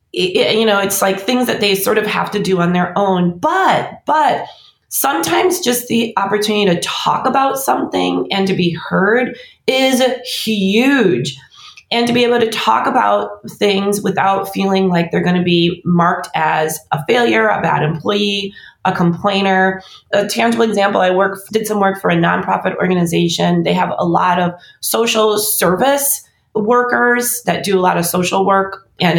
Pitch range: 175-225 Hz